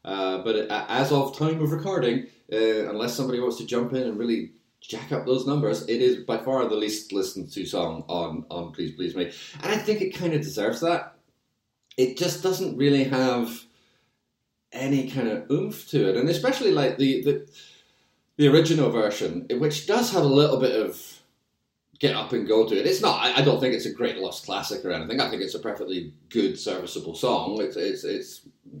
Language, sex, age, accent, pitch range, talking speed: English, male, 30-49, British, 125-175 Hz, 200 wpm